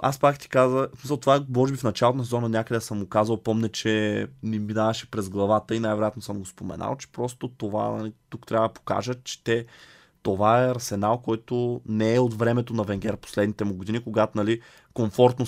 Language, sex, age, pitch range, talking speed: Bulgarian, male, 20-39, 110-125 Hz, 200 wpm